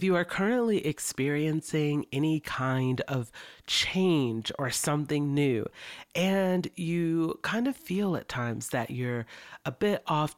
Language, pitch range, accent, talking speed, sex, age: English, 125-160 Hz, American, 140 wpm, female, 40-59